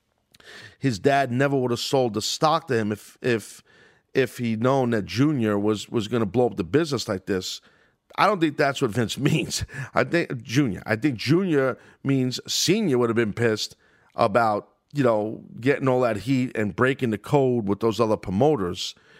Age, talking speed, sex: 40-59, 190 wpm, male